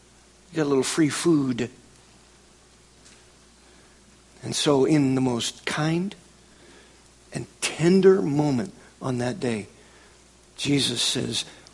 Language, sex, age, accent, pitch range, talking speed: English, male, 50-69, American, 120-175 Hz, 100 wpm